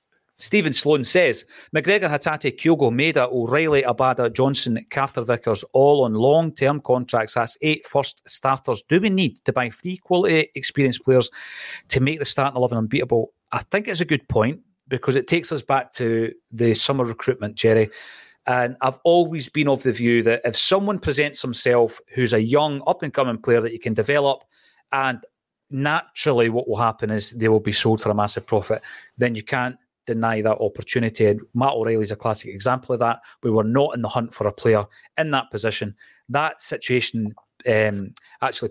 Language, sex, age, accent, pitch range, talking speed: English, male, 40-59, British, 115-145 Hz, 185 wpm